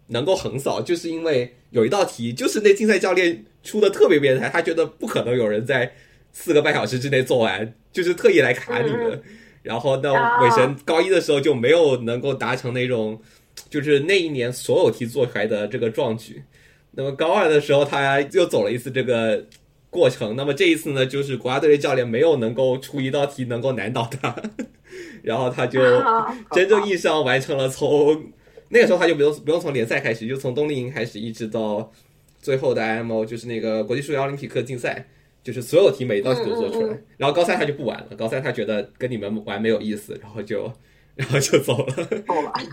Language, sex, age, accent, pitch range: Chinese, male, 20-39, native, 120-185 Hz